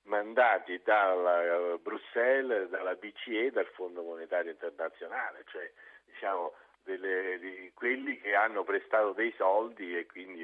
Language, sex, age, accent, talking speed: Italian, male, 50-69, native, 120 wpm